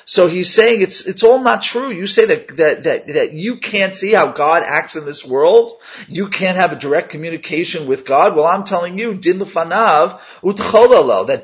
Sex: male